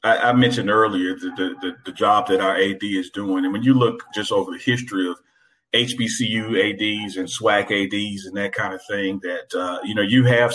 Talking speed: 210 wpm